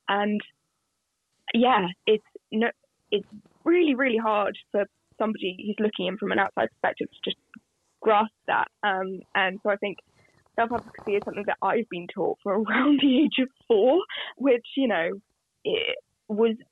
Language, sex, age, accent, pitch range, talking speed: English, female, 10-29, British, 185-230 Hz, 160 wpm